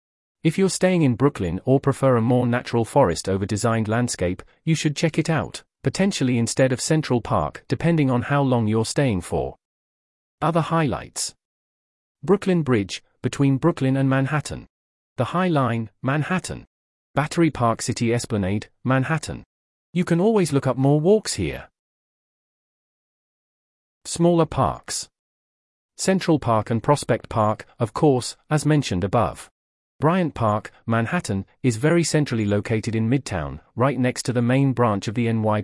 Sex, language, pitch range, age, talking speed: male, English, 110-150 Hz, 40-59, 145 wpm